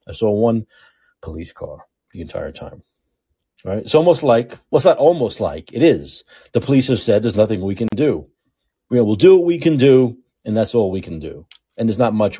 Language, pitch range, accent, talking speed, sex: English, 90-120 Hz, American, 215 wpm, male